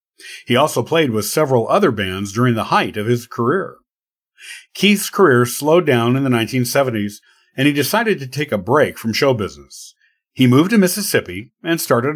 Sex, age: male, 50-69